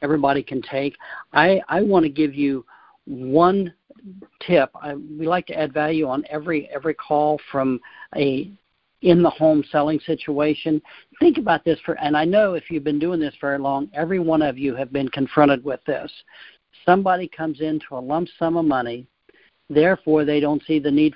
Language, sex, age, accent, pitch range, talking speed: English, male, 60-79, American, 140-170 Hz, 180 wpm